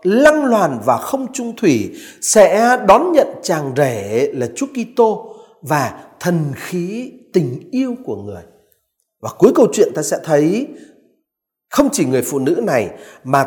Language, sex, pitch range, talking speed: Vietnamese, male, 155-250 Hz, 155 wpm